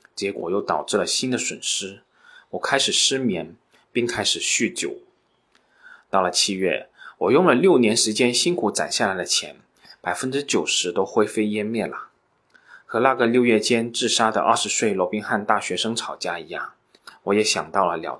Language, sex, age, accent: Chinese, male, 20-39, native